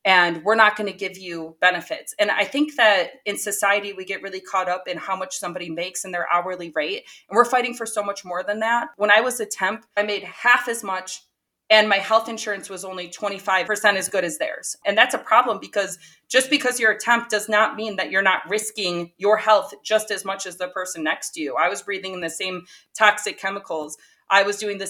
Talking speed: 235 wpm